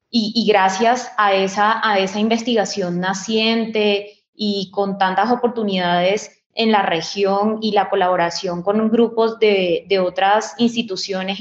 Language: English